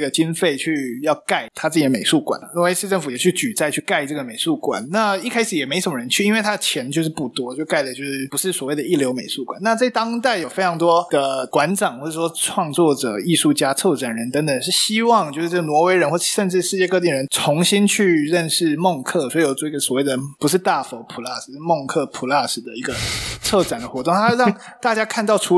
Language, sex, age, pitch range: Chinese, male, 20-39, 150-210 Hz